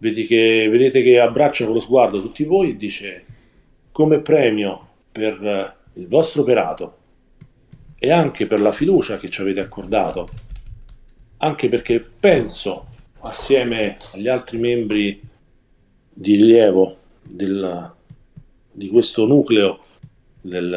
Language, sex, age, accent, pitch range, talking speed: English, male, 40-59, Italian, 100-130 Hz, 115 wpm